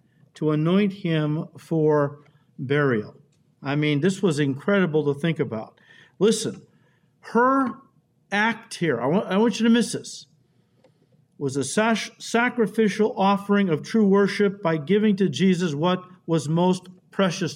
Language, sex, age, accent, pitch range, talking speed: English, male, 50-69, American, 165-220 Hz, 135 wpm